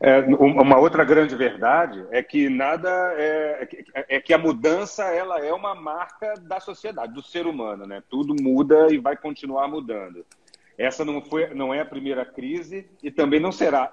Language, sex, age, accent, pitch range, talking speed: Portuguese, male, 40-59, Brazilian, 140-180 Hz, 150 wpm